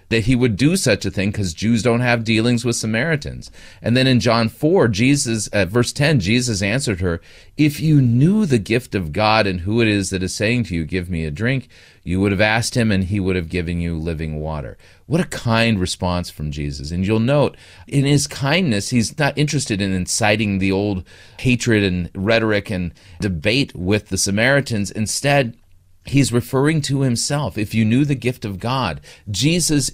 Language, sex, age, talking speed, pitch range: English, male, 40-59, 200 wpm, 95-120 Hz